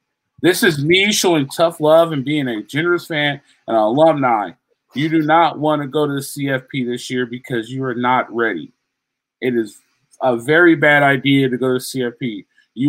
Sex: male